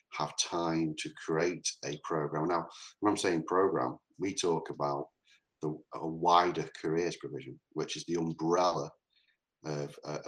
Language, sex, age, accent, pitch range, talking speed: English, male, 40-59, British, 75-85 Hz, 140 wpm